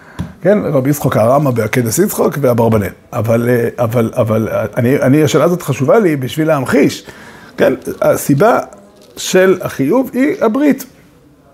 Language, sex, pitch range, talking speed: Hebrew, male, 125-190 Hz, 125 wpm